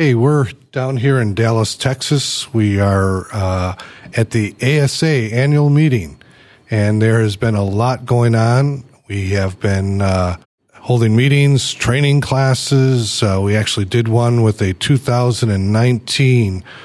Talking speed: 140 wpm